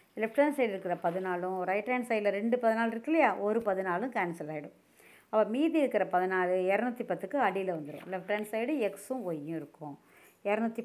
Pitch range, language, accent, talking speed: 185-245 Hz, Tamil, native, 170 wpm